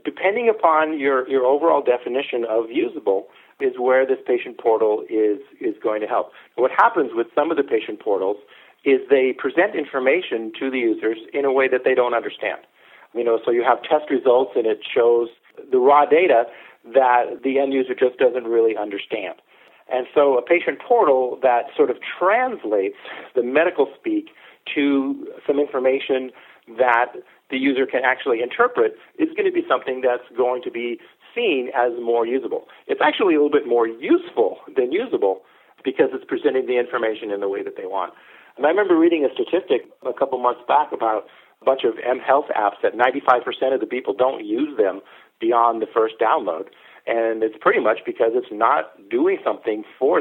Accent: American